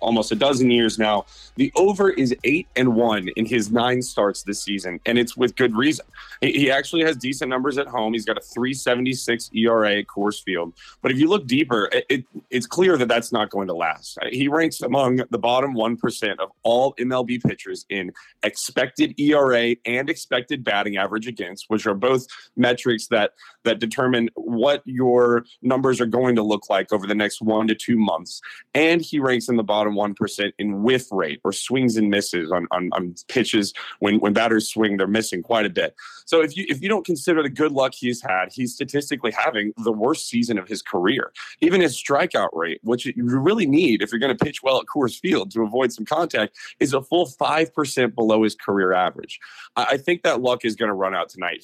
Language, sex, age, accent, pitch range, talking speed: English, male, 30-49, American, 110-135 Hz, 210 wpm